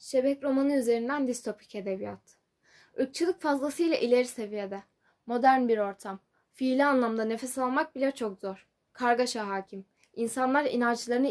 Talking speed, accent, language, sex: 120 wpm, native, Turkish, female